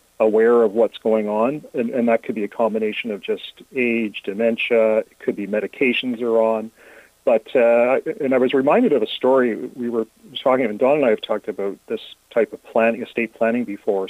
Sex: male